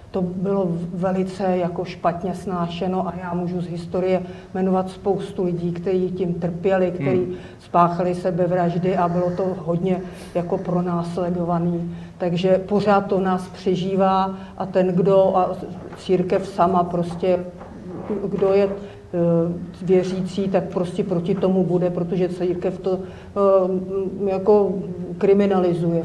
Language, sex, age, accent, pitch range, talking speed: Czech, female, 50-69, native, 180-215 Hz, 120 wpm